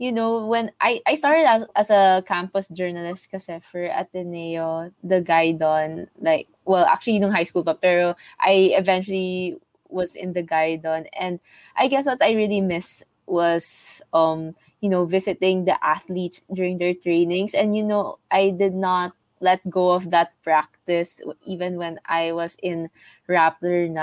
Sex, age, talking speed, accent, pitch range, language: female, 20-39, 160 wpm, Filipino, 175-200 Hz, English